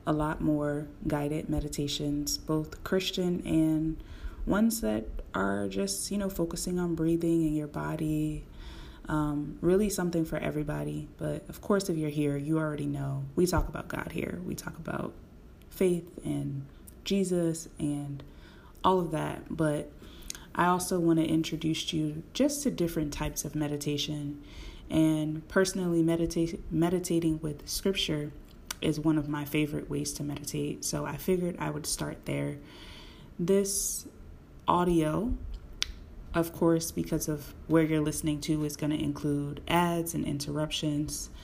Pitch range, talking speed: 145-170 Hz, 145 wpm